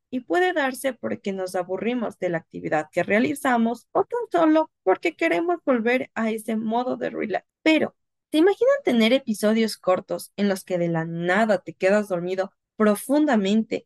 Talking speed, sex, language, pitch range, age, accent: 165 wpm, female, Spanish, 195-290 Hz, 20-39, Mexican